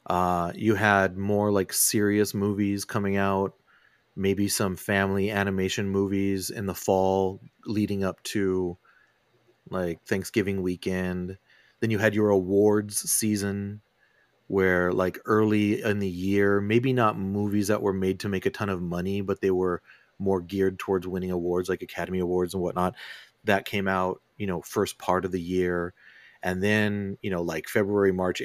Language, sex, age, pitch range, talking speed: English, male, 30-49, 90-100 Hz, 160 wpm